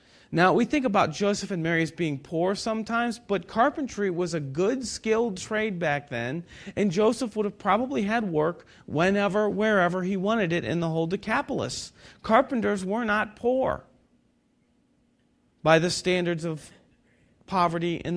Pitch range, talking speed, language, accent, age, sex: 175-220 Hz, 150 wpm, English, American, 40-59, male